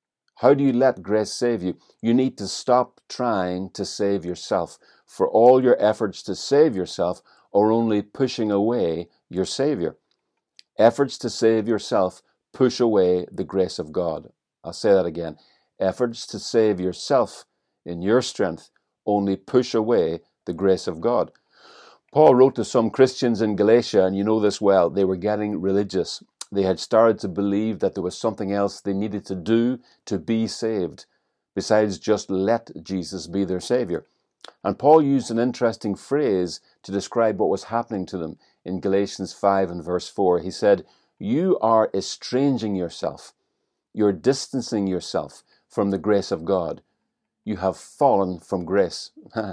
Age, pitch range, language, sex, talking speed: 50-69, 95-115 Hz, English, male, 160 wpm